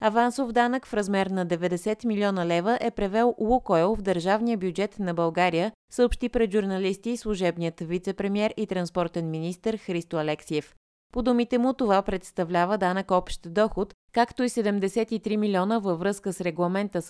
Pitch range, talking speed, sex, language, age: 170-220 Hz, 145 wpm, female, Bulgarian, 20-39